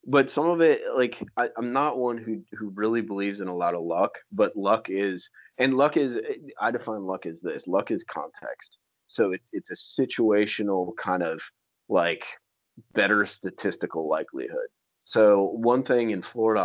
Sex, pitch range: male, 90-110 Hz